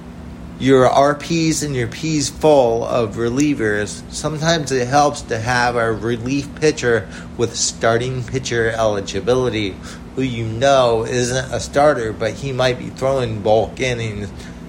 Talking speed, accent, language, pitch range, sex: 135 wpm, American, English, 100-140 Hz, male